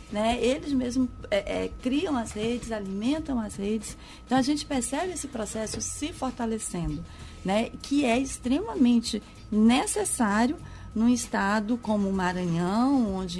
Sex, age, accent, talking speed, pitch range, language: female, 30-49, Brazilian, 135 wpm, 195-245 Hz, Portuguese